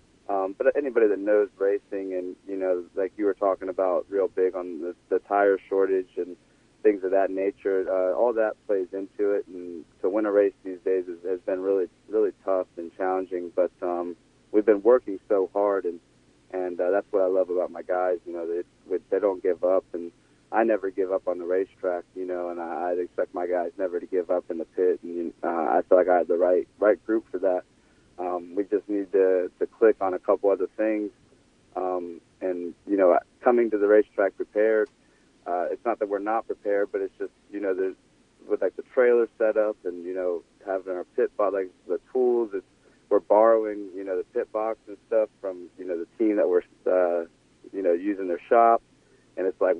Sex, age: male, 30-49